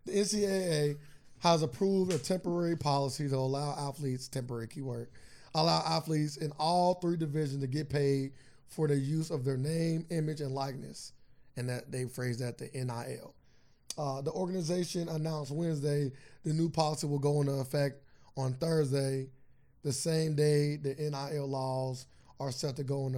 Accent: American